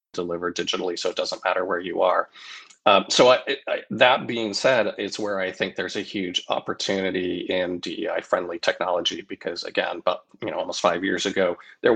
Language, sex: English, male